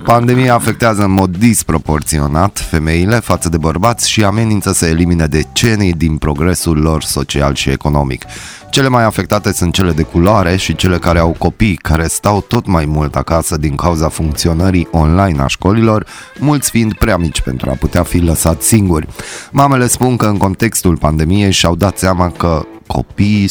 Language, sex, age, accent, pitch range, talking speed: Romanian, male, 20-39, native, 80-105 Hz, 165 wpm